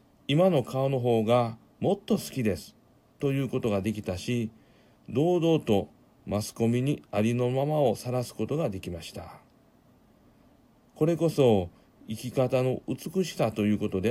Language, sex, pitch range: Japanese, male, 110-140 Hz